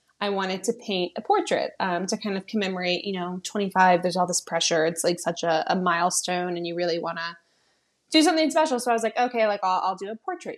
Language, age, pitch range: English, 20-39, 180-225 Hz